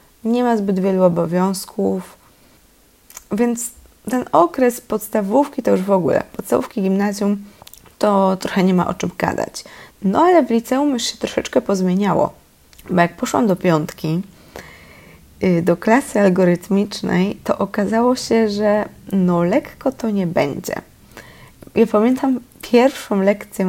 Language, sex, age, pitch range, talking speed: Polish, female, 20-39, 175-225 Hz, 130 wpm